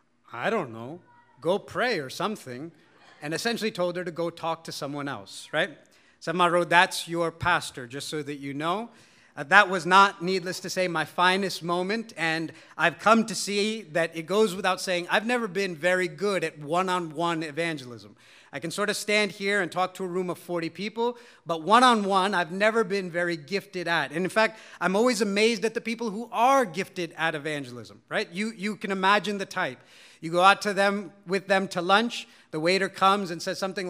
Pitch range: 170-215 Hz